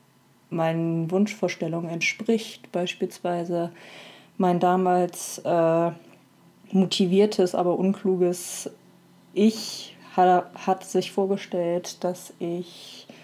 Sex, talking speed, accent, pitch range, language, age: female, 75 wpm, German, 175-210 Hz, German, 20-39